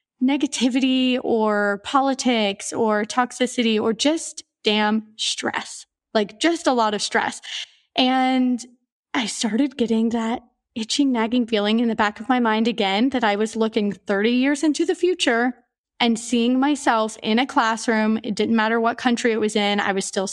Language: English